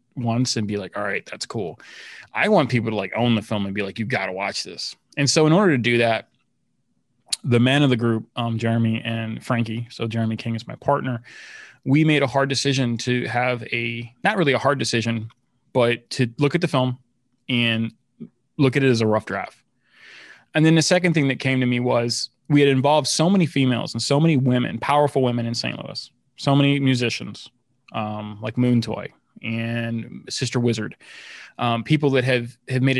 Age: 20-39